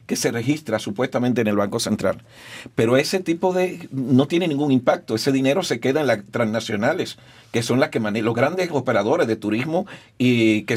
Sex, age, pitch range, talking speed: male, 50-69, 110-135 Hz, 195 wpm